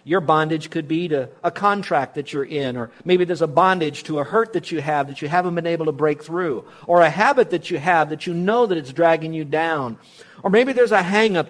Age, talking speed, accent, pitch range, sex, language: 50-69, 250 wpm, American, 150-190 Hz, male, English